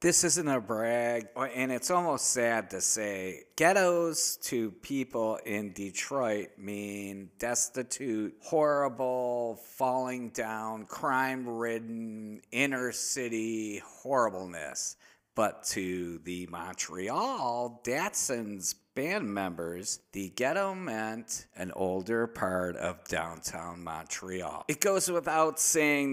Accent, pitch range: American, 100-130 Hz